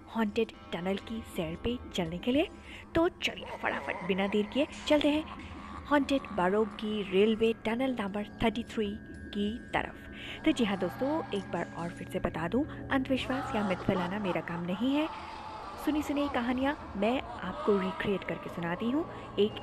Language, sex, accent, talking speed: Hindi, female, native, 170 wpm